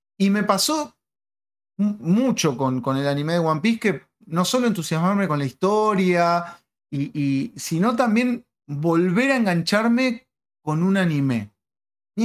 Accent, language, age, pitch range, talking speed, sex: Argentinian, Spanish, 30-49, 130-180 Hz, 130 wpm, male